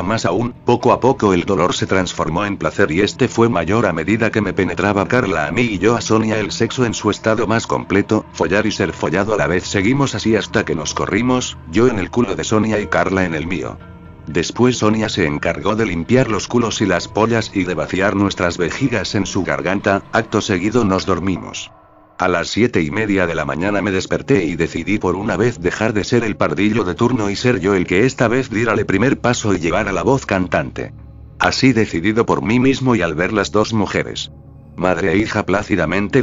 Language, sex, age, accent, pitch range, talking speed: English, male, 60-79, Spanish, 90-110 Hz, 225 wpm